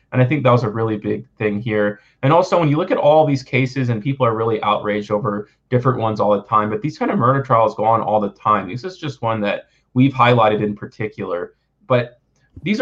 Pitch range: 110-135 Hz